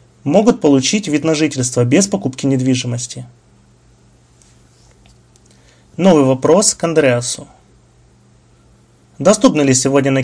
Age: 30-49